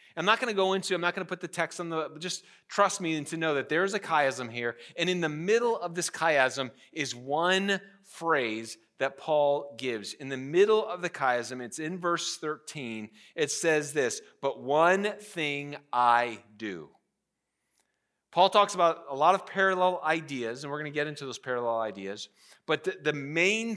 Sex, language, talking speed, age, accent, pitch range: male, English, 200 wpm, 30-49, American, 140-185 Hz